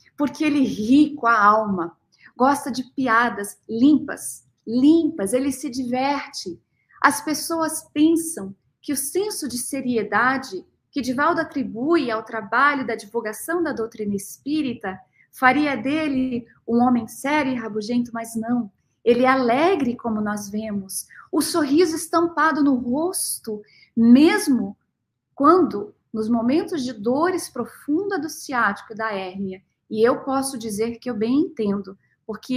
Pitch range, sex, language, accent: 220-290 Hz, female, Portuguese, Brazilian